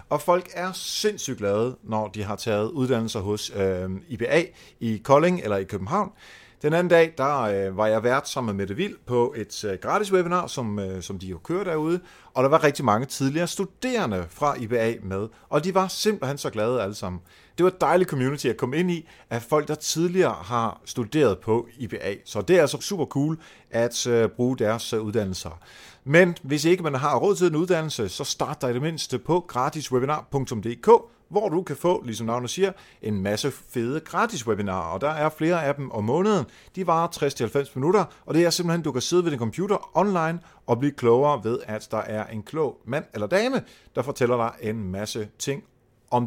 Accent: native